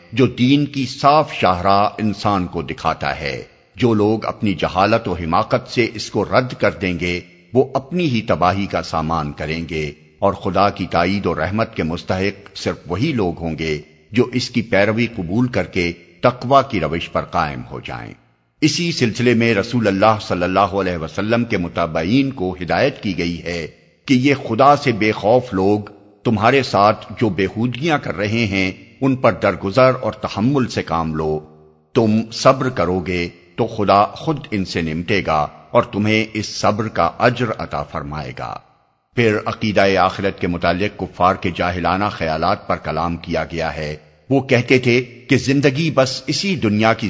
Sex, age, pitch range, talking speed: male, 50-69, 85-125 Hz, 175 wpm